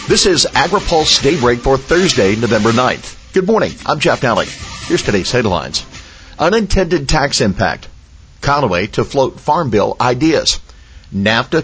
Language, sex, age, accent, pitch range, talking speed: English, male, 50-69, American, 105-140 Hz, 135 wpm